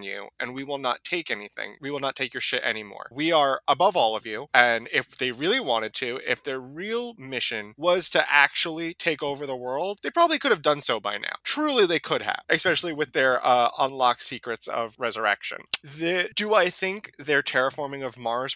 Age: 20-39